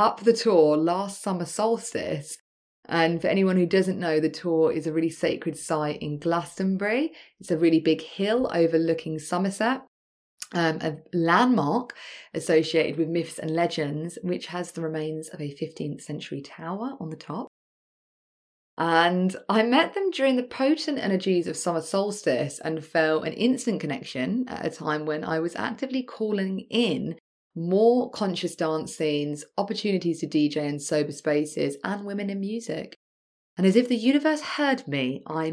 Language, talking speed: English, 160 wpm